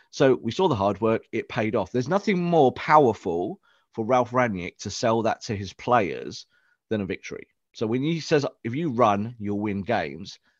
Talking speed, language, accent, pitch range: 200 wpm, English, British, 100-130 Hz